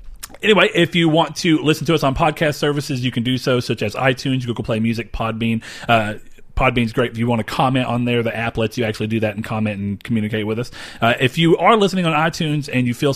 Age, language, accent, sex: 30-49, English, American, male